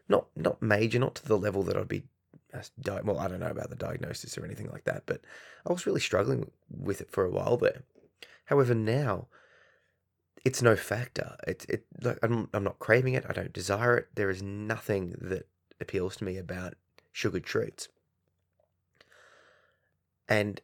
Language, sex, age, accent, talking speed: English, male, 20-39, Australian, 175 wpm